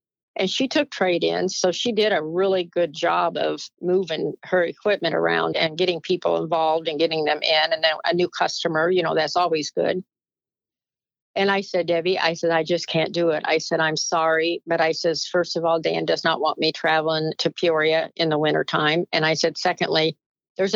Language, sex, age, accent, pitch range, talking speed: English, female, 50-69, American, 160-180 Hz, 210 wpm